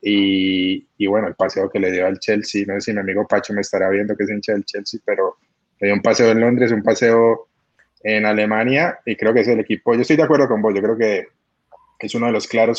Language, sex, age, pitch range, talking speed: Spanish, male, 20-39, 100-115 Hz, 260 wpm